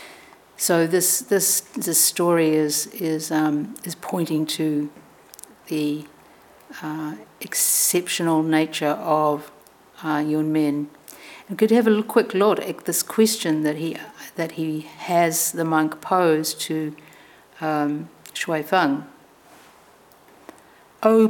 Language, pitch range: English, 155-195 Hz